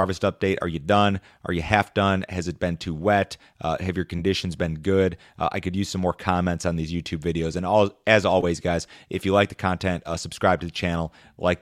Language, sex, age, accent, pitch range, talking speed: English, male, 30-49, American, 85-95 Hz, 245 wpm